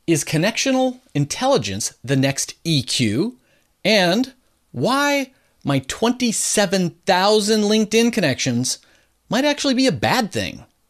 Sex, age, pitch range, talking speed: male, 40-59, 140-215 Hz, 100 wpm